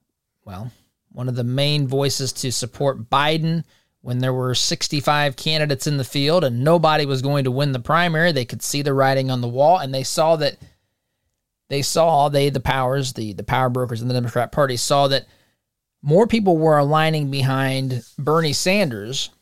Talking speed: 180 wpm